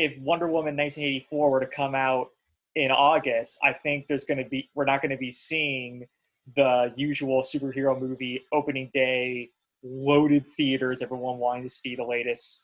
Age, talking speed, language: 20-39, 170 wpm, English